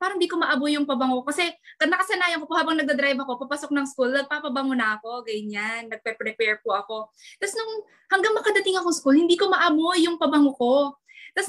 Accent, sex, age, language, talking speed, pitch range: native, female, 20-39, Filipino, 195 wpm, 255-335 Hz